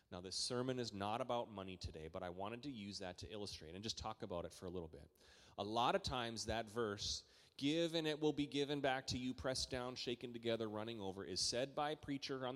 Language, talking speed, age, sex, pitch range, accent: English, 250 wpm, 30-49, male, 95-125 Hz, American